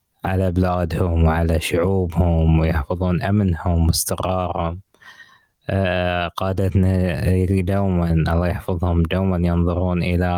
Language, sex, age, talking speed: Arabic, male, 20-39, 80 wpm